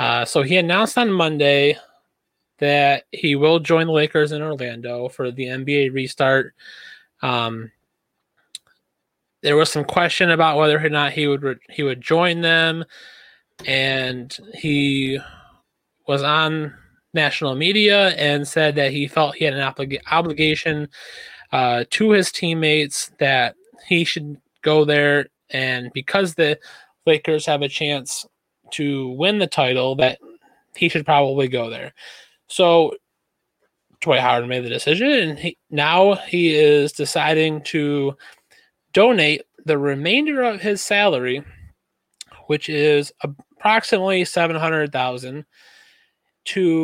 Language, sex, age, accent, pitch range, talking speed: English, male, 20-39, American, 140-165 Hz, 130 wpm